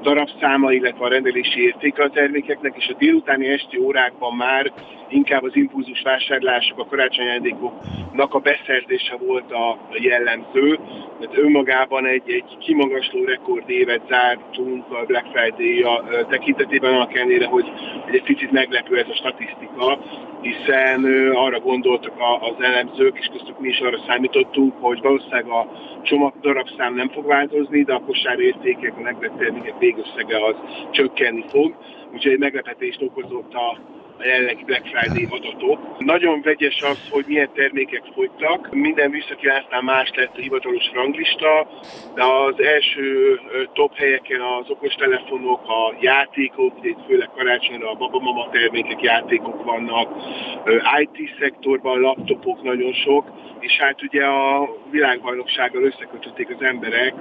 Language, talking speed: Hungarian, 130 wpm